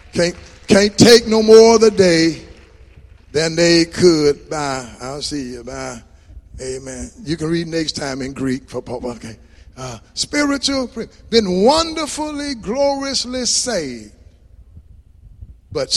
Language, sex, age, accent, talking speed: English, male, 50-69, American, 125 wpm